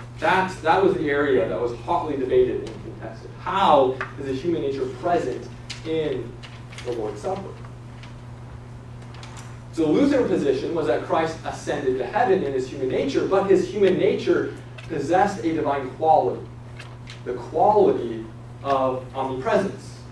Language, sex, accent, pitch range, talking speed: English, male, American, 120-170 Hz, 140 wpm